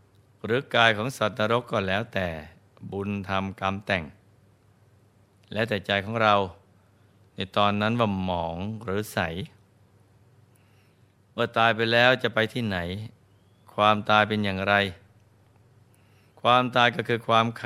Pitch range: 100-115 Hz